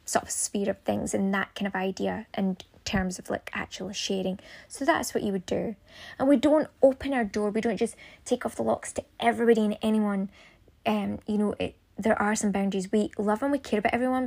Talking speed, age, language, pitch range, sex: 230 wpm, 20-39, English, 195-230 Hz, female